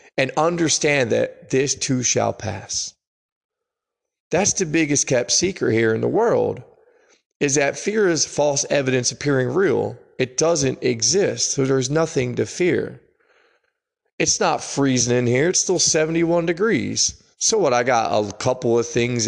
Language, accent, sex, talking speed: English, American, male, 155 wpm